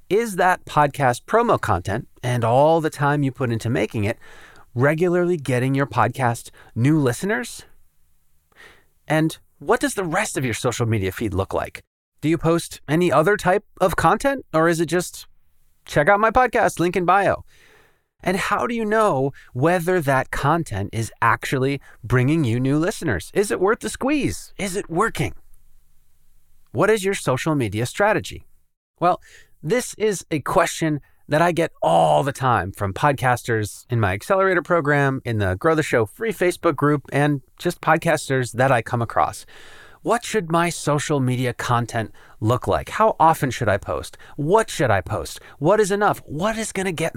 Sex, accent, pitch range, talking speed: male, American, 115-180 Hz, 170 wpm